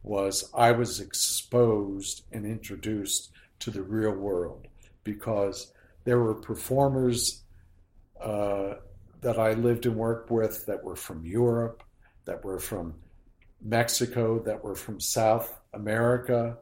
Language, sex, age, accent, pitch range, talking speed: English, male, 60-79, American, 105-120 Hz, 125 wpm